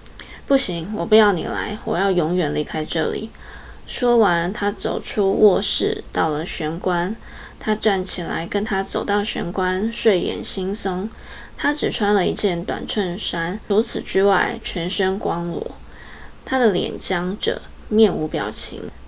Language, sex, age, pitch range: Chinese, female, 20-39, 175-215 Hz